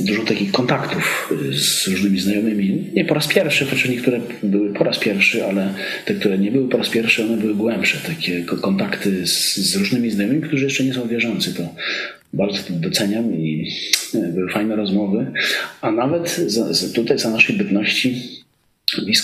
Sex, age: male, 40-59